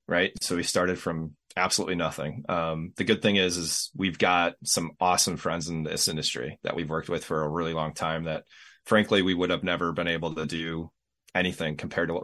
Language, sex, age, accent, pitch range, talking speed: English, male, 30-49, American, 80-95 Hz, 215 wpm